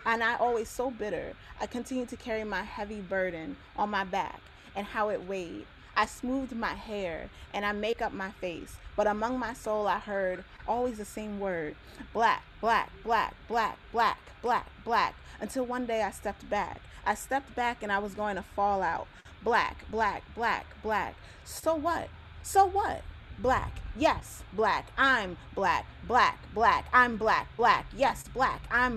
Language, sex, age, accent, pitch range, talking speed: English, female, 20-39, American, 170-230 Hz, 170 wpm